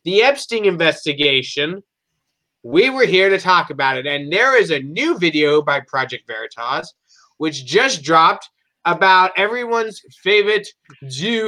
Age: 30-49